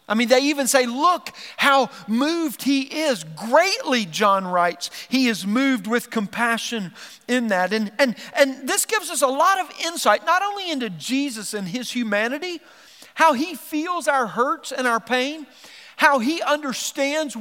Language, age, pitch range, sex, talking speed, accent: English, 40-59, 225-305 Hz, male, 165 wpm, American